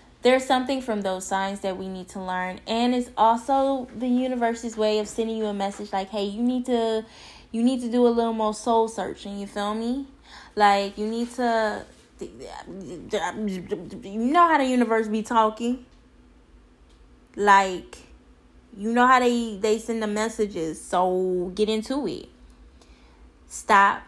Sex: female